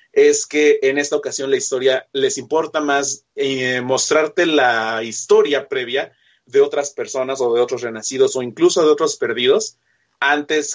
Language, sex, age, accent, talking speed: Spanish, male, 30-49, Mexican, 155 wpm